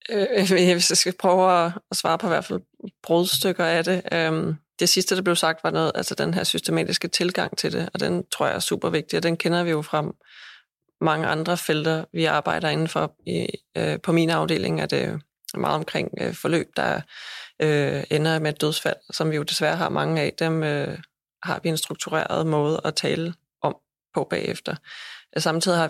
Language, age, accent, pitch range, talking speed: Danish, 20-39, native, 160-180 Hz, 190 wpm